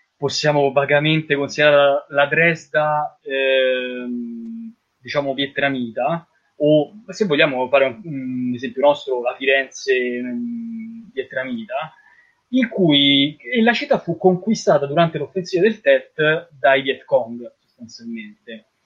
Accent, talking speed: native, 110 wpm